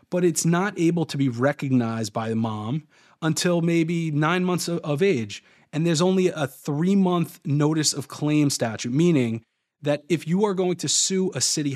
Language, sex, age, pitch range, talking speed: English, male, 30-49, 130-165 Hz, 180 wpm